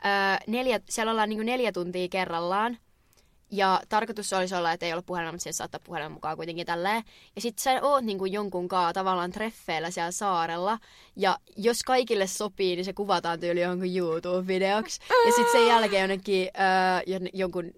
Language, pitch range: Finnish, 175-205 Hz